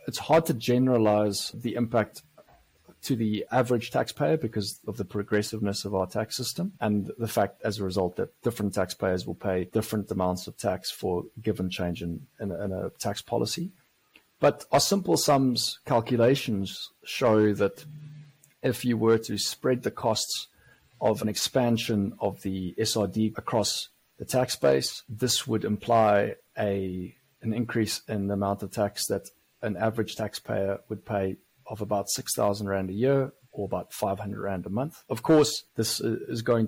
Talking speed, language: 165 wpm, English